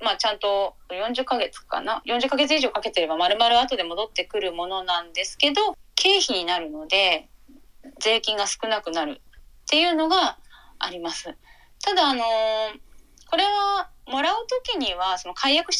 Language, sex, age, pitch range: Japanese, female, 20-39, 185-310 Hz